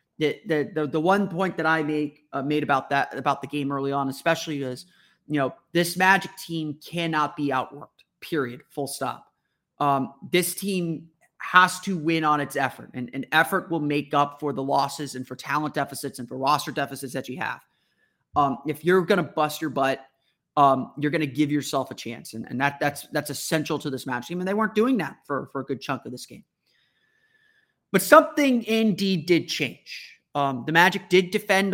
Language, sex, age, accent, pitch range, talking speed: English, male, 30-49, American, 140-170 Hz, 200 wpm